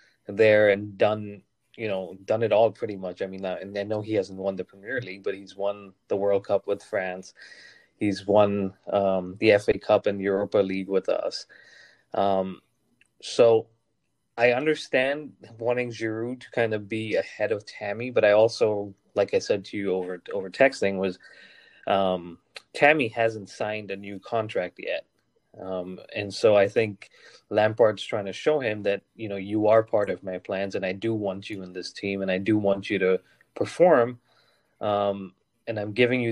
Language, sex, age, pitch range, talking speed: English, male, 20-39, 95-115 Hz, 185 wpm